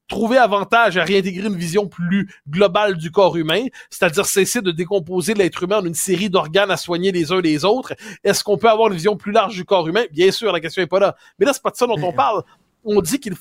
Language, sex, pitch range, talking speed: French, male, 180-235 Hz, 255 wpm